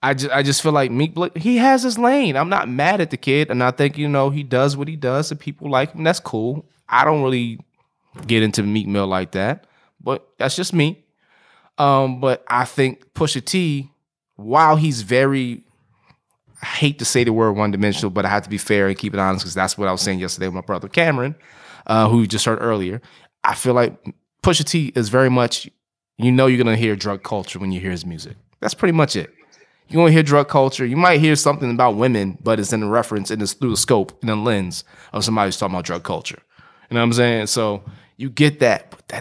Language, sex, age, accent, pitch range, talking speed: English, male, 20-39, American, 105-145 Hz, 240 wpm